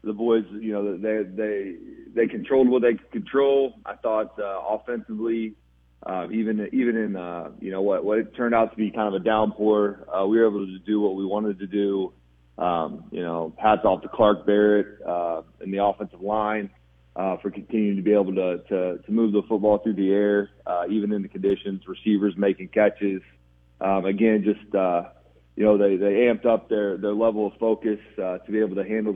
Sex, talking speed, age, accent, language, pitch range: male, 210 wpm, 30-49, American, English, 95-110 Hz